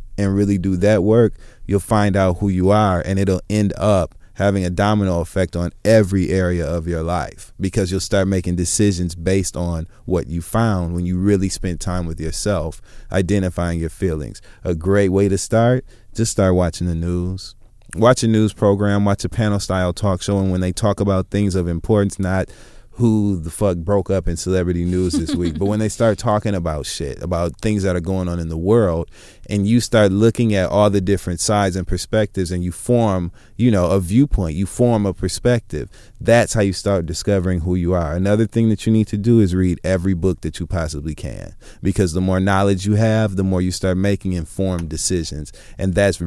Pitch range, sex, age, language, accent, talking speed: 90-105 Hz, male, 30-49, English, American, 205 wpm